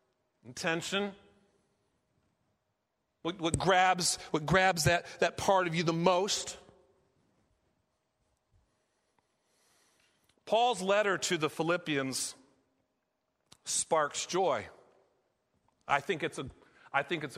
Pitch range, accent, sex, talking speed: 170-215 Hz, American, male, 95 wpm